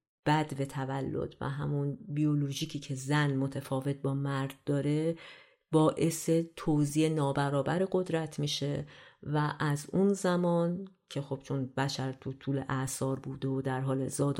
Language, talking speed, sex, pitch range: Persian, 135 wpm, female, 135-150 Hz